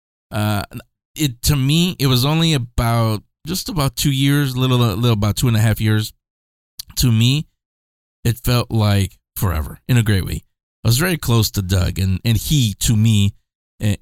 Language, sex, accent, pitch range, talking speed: English, male, American, 95-125 Hz, 185 wpm